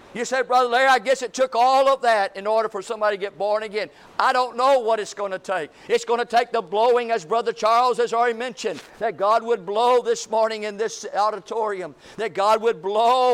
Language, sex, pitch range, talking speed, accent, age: English, male, 215-245 Hz, 235 wpm, American, 50-69